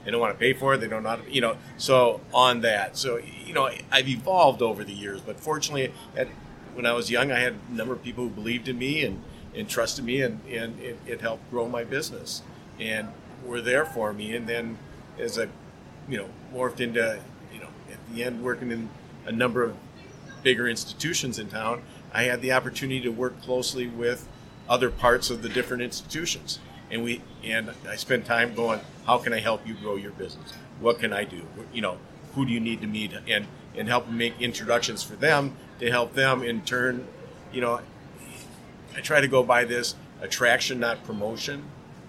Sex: male